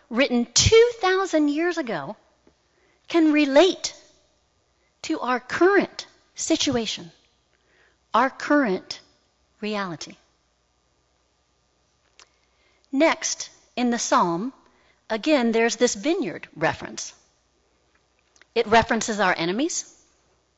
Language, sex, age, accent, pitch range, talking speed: English, female, 40-59, American, 185-305 Hz, 75 wpm